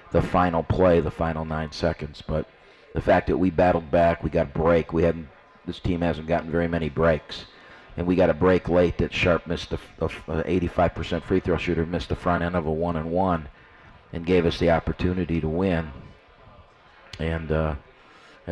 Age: 50-69